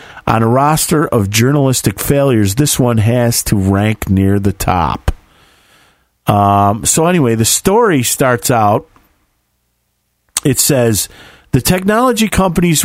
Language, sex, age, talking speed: English, male, 40-59, 120 wpm